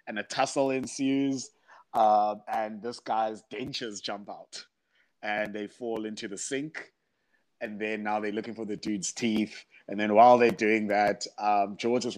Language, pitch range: English, 100-120 Hz